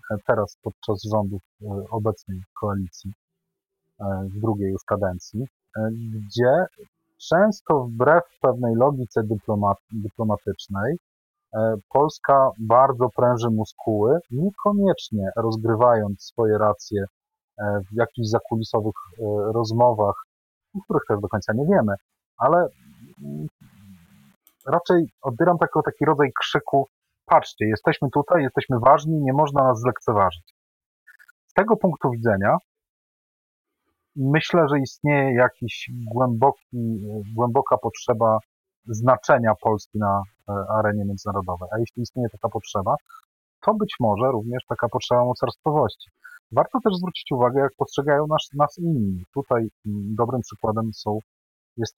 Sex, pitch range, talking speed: male, 105-140 Hz, 105 wpm